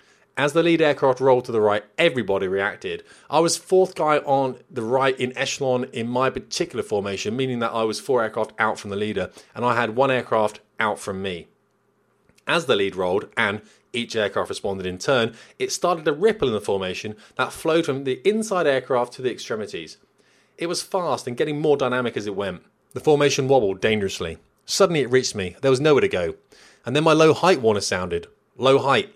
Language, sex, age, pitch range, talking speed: English, male, 30-49, 110-150 Hz, 200 wpm